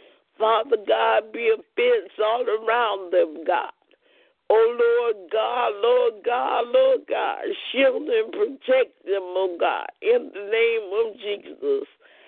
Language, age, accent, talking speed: English, 50-69, American, 130 wpm